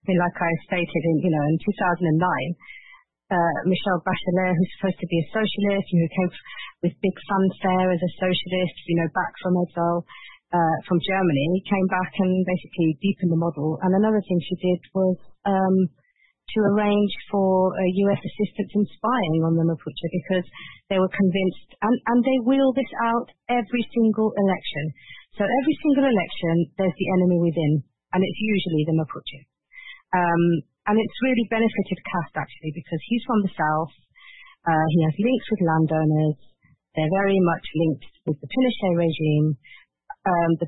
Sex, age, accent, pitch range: female, 40-59, British, 160-195 Hz